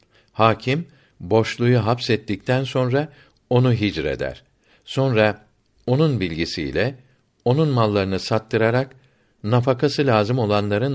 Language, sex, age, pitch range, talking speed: Turkish, male, 60-79, 100-130 Hz, 80 wpm